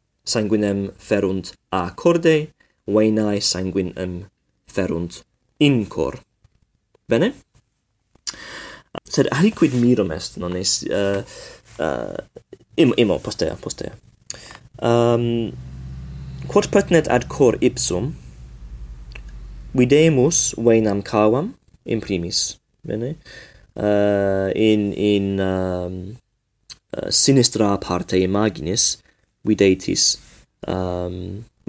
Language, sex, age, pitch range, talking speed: English, male, 20-39, 95-120 Hz, 70 wpm